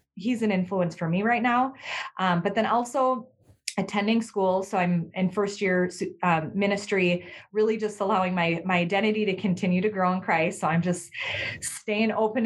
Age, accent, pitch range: 20-39, American, 180-225 Hz